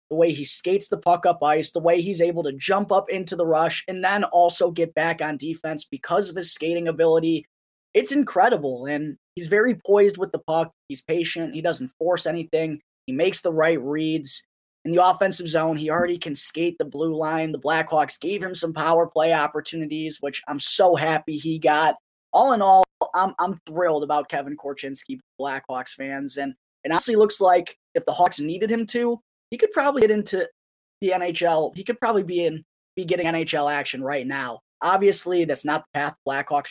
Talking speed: 200 wpm